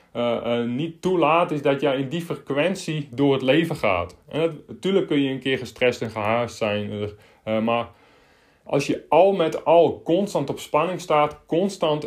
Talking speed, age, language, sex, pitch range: 180 wpm, 30-49, Dutch, male, 125-155 Hz